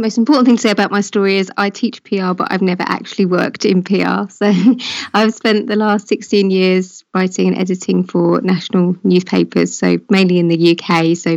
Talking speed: 200 wpm